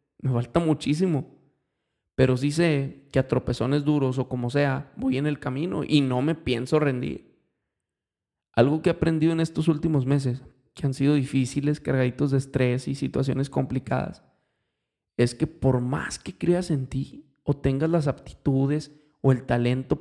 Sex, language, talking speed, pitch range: male, Spanish, 165 wpm, 125-145 Hz